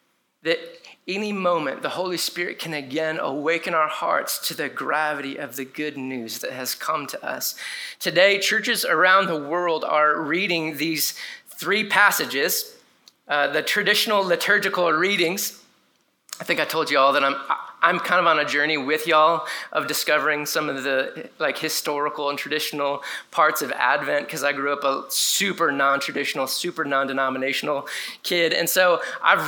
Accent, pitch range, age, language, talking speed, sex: American, 150-190 Hz, 30-49, English, 160 wpm, male